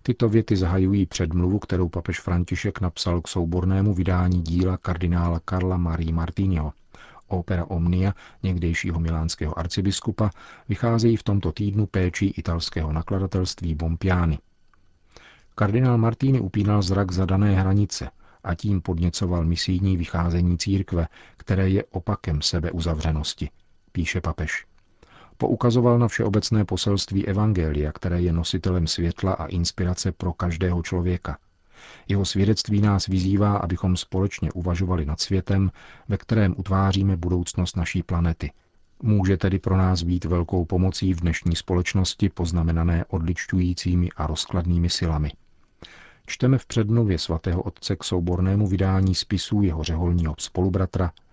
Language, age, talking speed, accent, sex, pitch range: Czech, 40-59, 120 wpm, native, male, 85-100 Hz